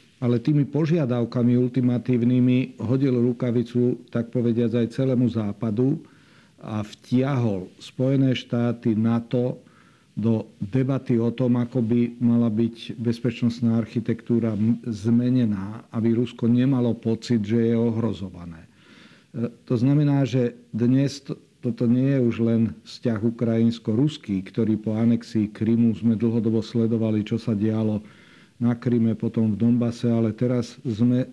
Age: 50-69